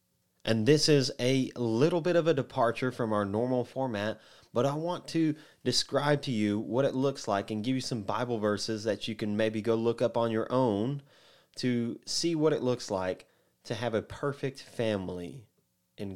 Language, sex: English, male